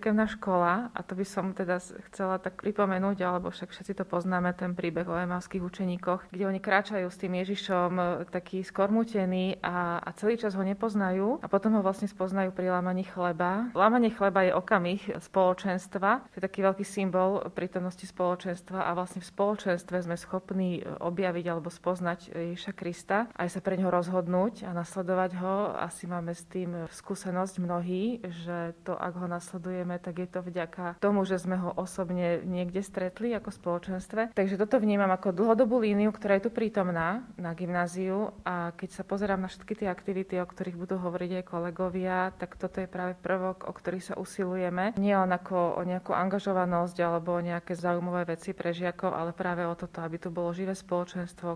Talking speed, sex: 180 wpm, female